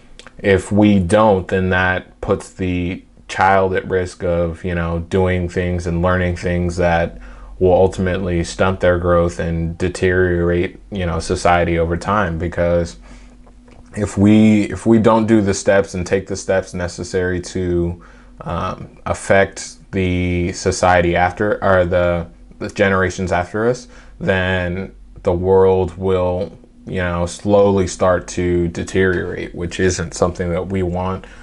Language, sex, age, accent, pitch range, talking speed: English, male, 20-39, American, 85-100 Hz, 140 wpm